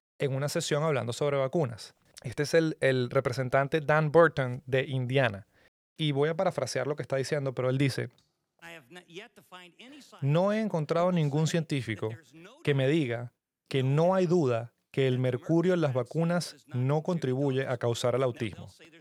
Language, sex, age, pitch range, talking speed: Spanish, male, 30-49, 135-170 Hz, 160 wpm